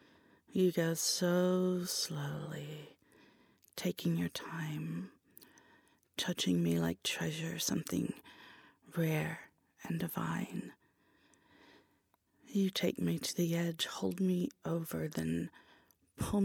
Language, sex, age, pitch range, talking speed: English, female, 30-49, 155-180 Hz, 95 wpm